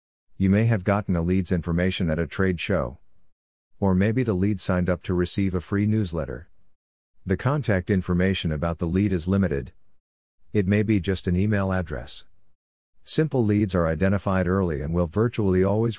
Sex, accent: male, American